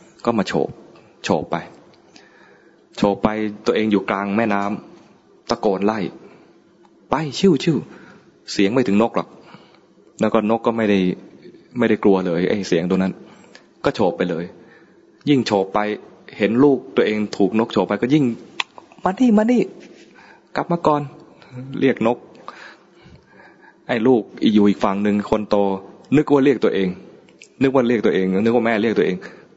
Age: 20-39